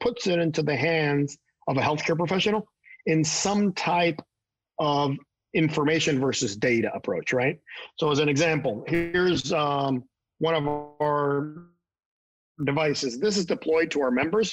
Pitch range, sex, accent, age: 140-170 Hz, male, American, 40-59